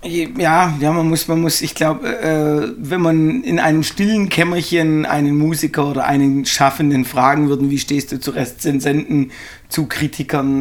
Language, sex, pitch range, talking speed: German, male, 125-145 Hz, 160 wpm